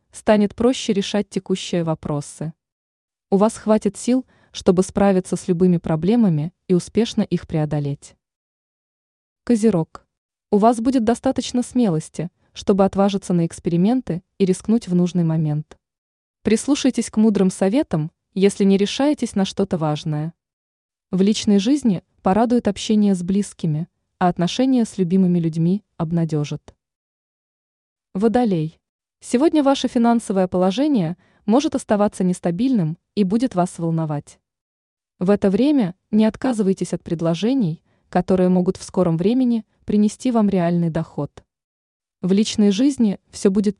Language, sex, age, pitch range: Russian, female, 20-39, 175-220 Hz